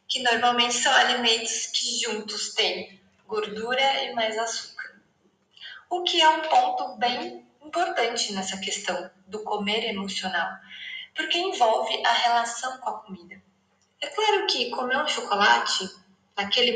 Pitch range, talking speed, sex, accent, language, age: 205-310 Hz, 135 wpm, female, Brazilian, Portuguese, 20-39